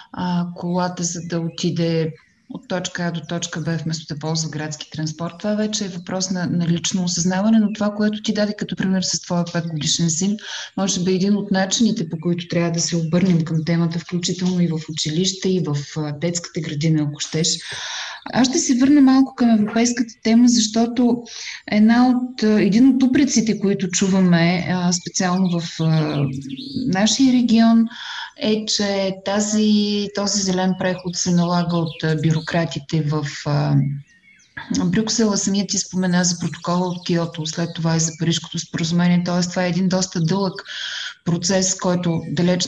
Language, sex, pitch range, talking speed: Bulgarian, female, 170-210 Hz, 155 wpm